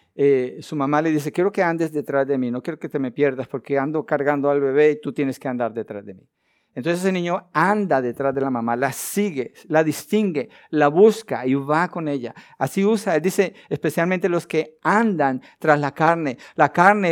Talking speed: 210 wpm